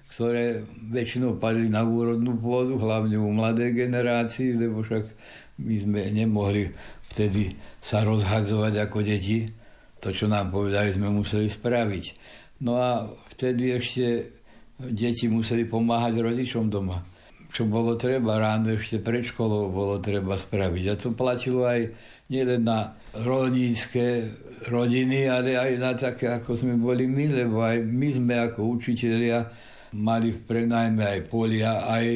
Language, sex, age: Slovak, male, 60-79